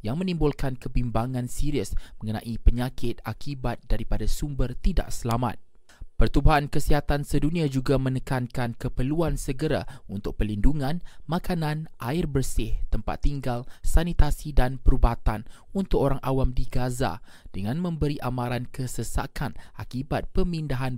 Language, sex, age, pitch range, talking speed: Malay, male, 20-39, 115-150 Hz, 110 wpm